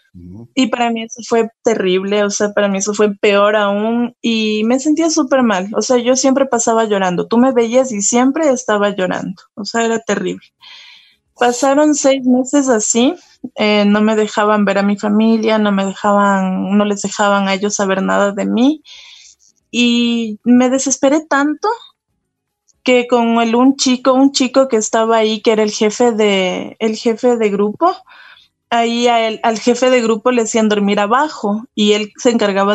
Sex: female